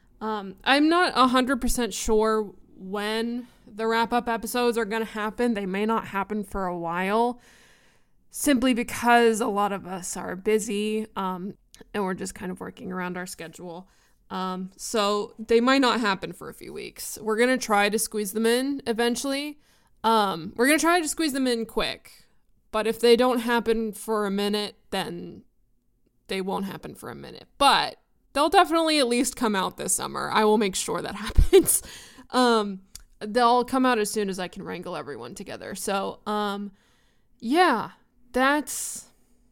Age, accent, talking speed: 20-39, American, 170 wpm